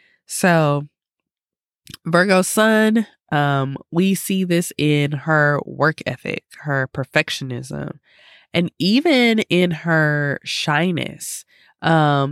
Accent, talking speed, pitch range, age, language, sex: American, 95 wpm, 145-190 Hz, 20-39, English, female